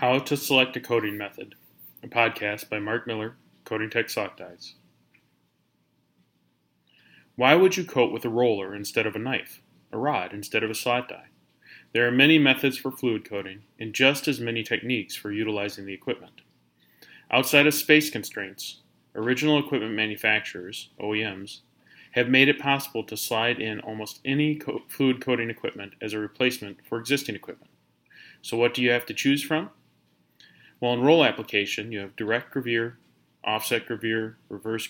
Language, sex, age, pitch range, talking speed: English, male, 30-49, 105-125 Hz, 165 wpm